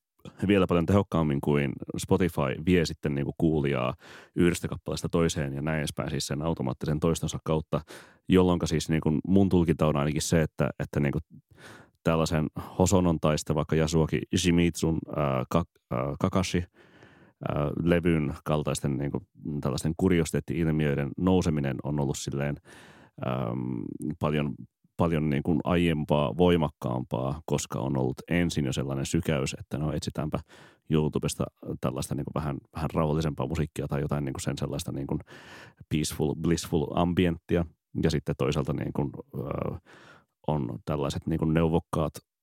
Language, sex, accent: Finnish, male, native